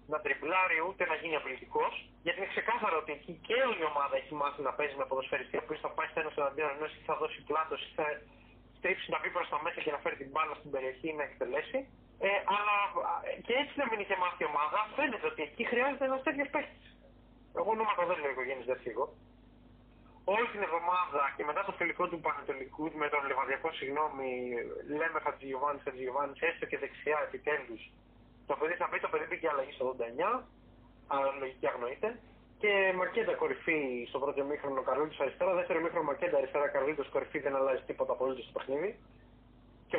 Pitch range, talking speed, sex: 145-220 Hz, 195 wpm, male